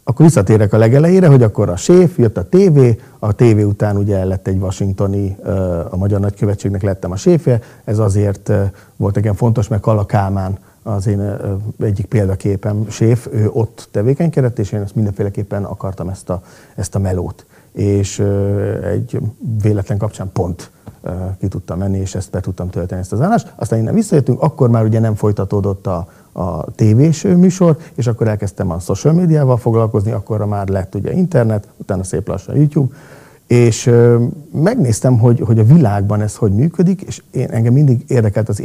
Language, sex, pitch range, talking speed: Hungarian, male, 100-125 Hz, 170 wpm